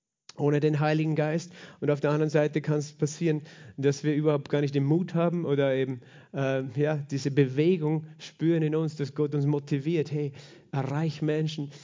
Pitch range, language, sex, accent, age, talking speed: 145-175 Hz, German, male, German, 40-59, 180 wpm